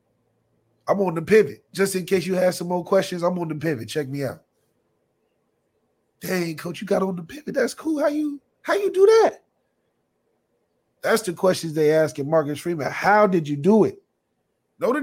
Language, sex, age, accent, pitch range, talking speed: English, male, 30-49, American, 145-200 Hz, 190 wpm